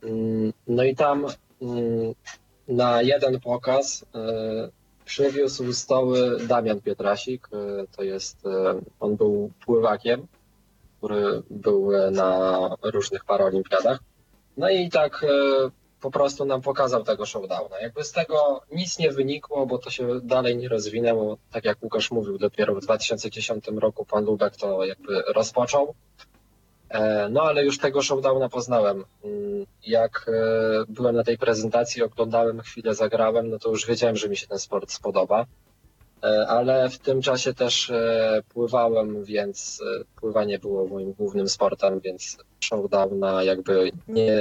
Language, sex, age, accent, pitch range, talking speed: Polish, male, 20-39, native, 105-135 Hz, 130 wpm